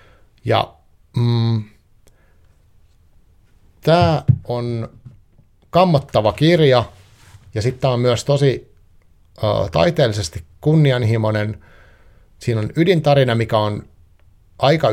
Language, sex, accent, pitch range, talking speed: Finnish, male, native, 100-120 Hz, 85 wpm